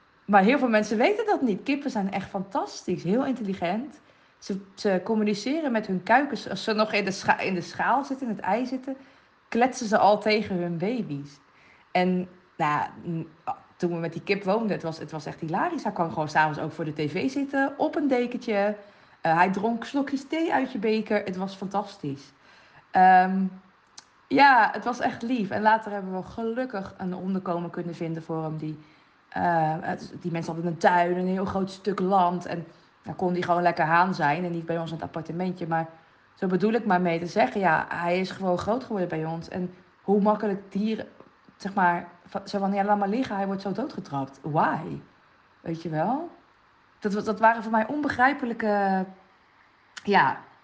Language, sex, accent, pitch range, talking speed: Dutch, female, Dutch, 175-225 Hz, 190 wpm